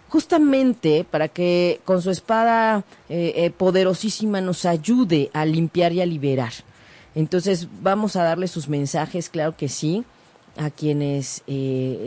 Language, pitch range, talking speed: Spanish, 155-210 Hz, 140 wpm